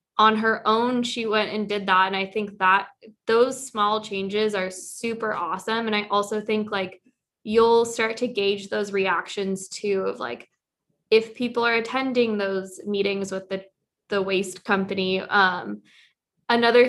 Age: 20-39